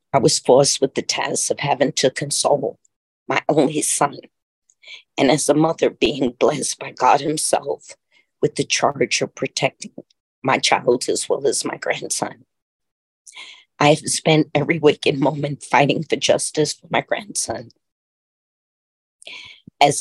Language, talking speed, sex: English, 140 wpm, female